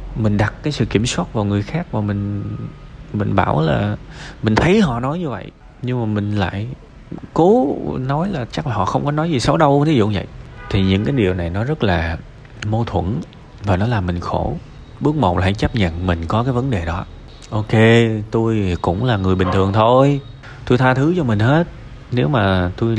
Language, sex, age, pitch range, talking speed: Vietnamese, male, 20-39, 95-125 Hz, 215 wpm